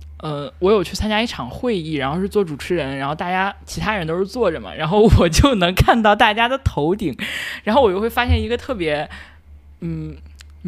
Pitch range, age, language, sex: 145-215 Hz, 20-39, Chinese, male